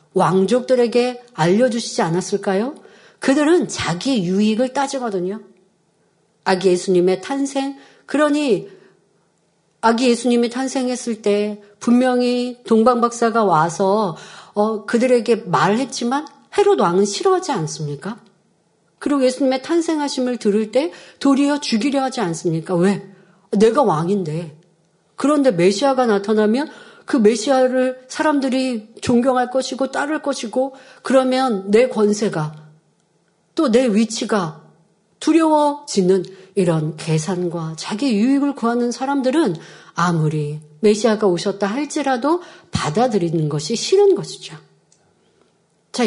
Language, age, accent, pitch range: Korean, 40-59, native, 190-265 Hz